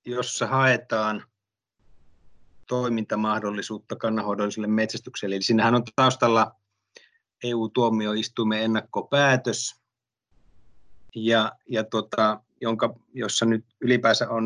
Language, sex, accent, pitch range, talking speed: Finnish, male, native, 105-120 Hz, 75 wpm